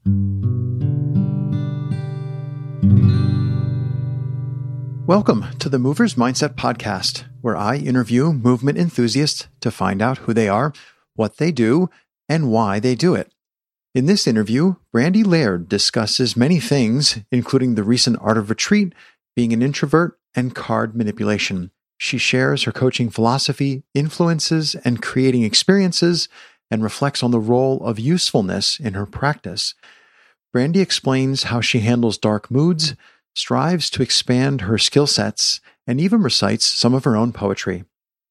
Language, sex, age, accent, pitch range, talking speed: English, male, 50-69, American, 115-145 Hz, 135 wpm